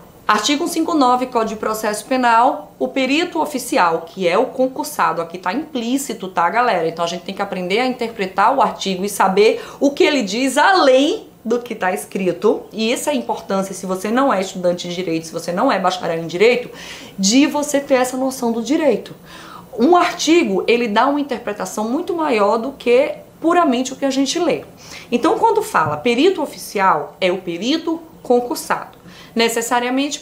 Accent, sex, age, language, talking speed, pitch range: Brazilian, female, 20-39, Portuguese, 180 wpm, 195-280 Hz